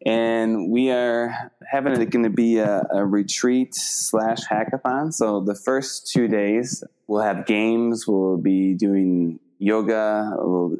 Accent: American